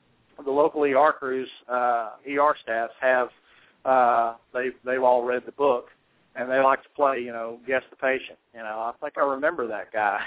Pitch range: 115-130 Hz